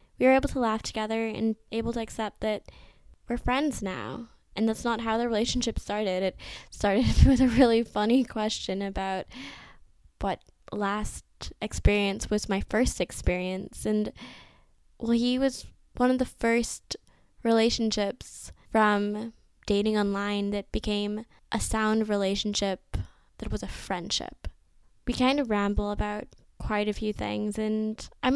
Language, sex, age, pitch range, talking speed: English, female, 10-29, 205-245 Hz, 145 wpm